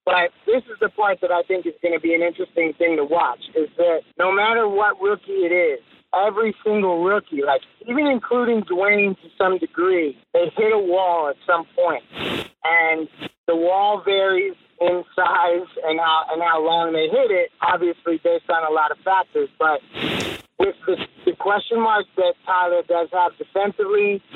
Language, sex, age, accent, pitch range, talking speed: English, male, 30-49, American, 170-230 Hz, 180 wpm